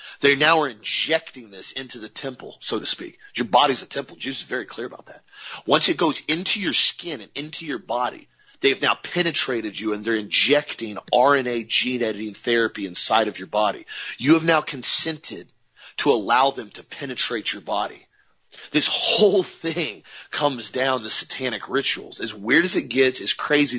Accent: American